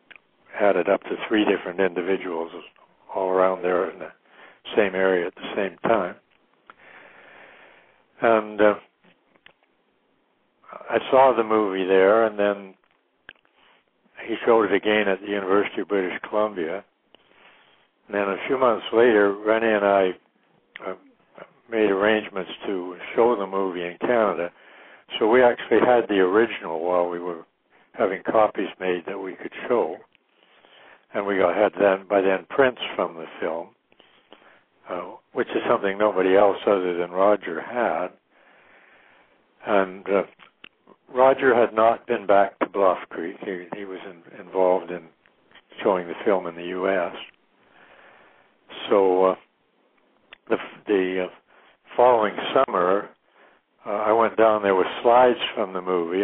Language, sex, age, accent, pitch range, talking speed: English, male, 60-79, American, 90-105 Hz, 140 wpm